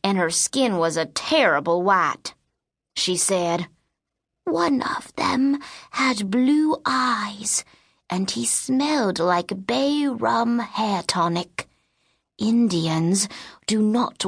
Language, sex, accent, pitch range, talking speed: English, female, American, 175-235 Hz, 110 wpm